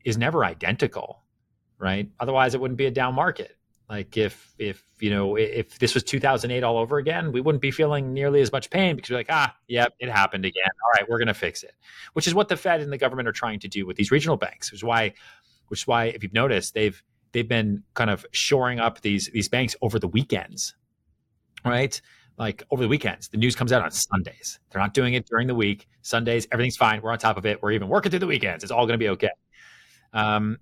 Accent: American